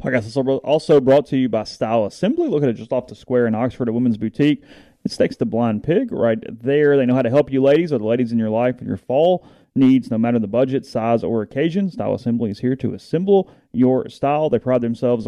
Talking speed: 250 wpm